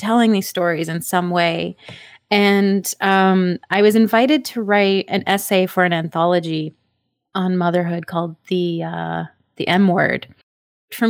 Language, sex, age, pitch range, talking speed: English, female, 20-39, 170-230 Hz, 145 wpm